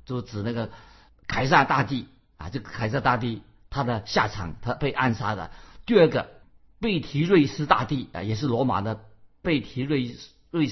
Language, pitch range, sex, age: Chinese, 115-150 Hz, male, 50-69